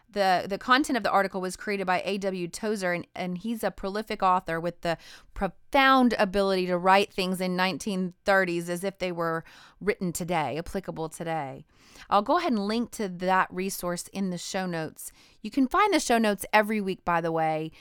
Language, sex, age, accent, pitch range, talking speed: English, female, 30-49, American, 180-210 Hz, 190 wpm